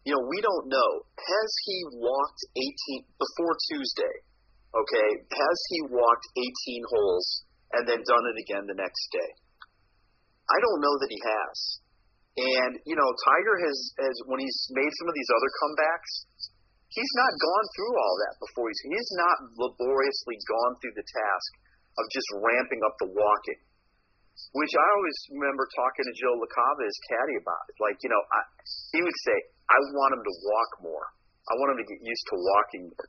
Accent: American